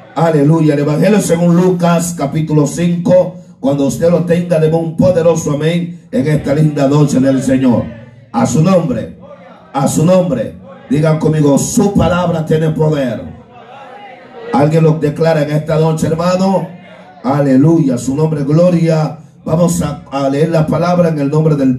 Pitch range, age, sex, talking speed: 150-190 Hz, 50-69, male, 150 wpm